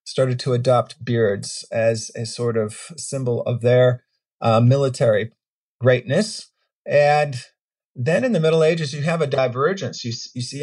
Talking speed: 150 wpm